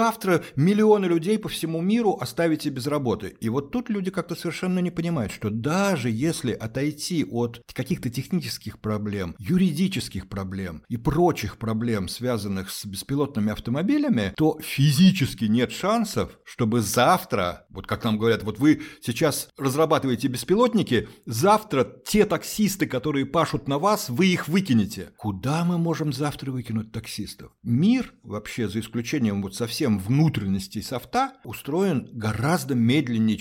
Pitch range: 105-155 Hz